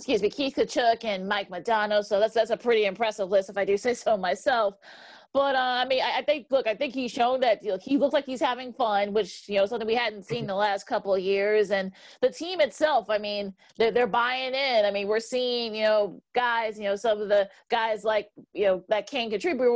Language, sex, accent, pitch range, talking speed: English, female, American, 205-245 Hz, 250 wpm